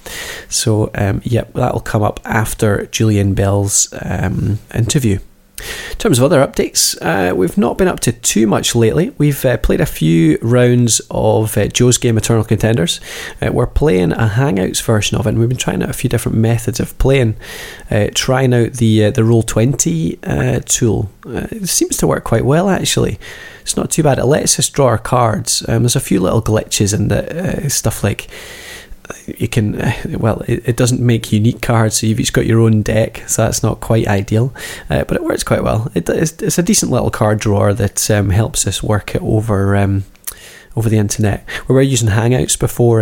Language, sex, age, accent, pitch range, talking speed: English, male, 20-39, British, 105-125 Hz, 200 wpm